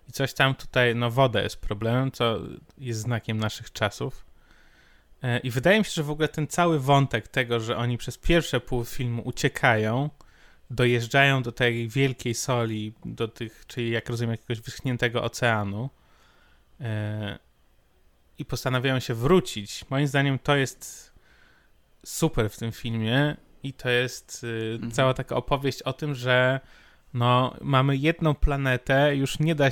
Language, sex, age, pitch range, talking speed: Polish, male, 20-39, 115-135 Hz, 145 wpm